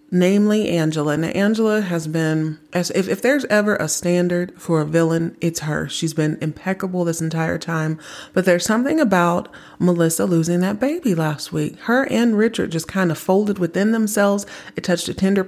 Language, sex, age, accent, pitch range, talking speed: English, female, 30-49, American, 160-190 Hz, 180 wpm